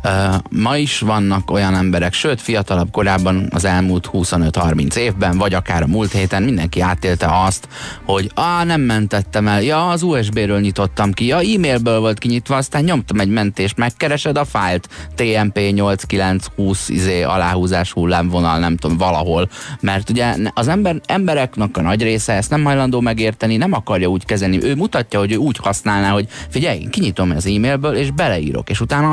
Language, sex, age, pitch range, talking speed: Hungarian, male, 30-49, 90-115 Hz, 165 wpm